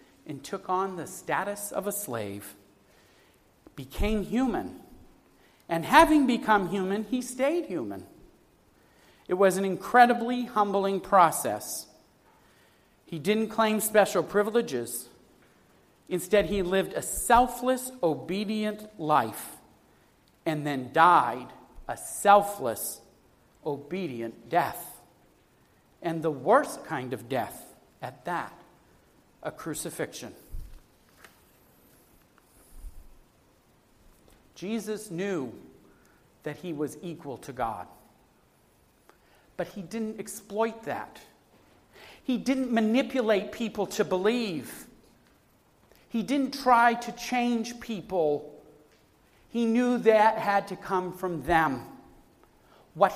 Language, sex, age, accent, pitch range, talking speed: English, male, 50-69, American, 170-225 Hz, 95 wpm